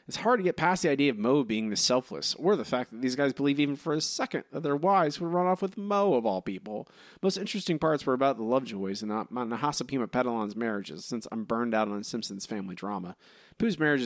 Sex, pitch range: male, 110-155 Hz